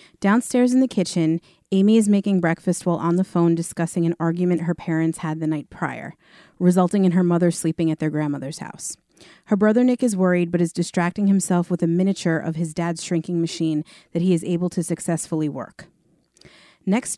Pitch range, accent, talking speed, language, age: 165-190 Hz, American, 190 wpm, English, 40-59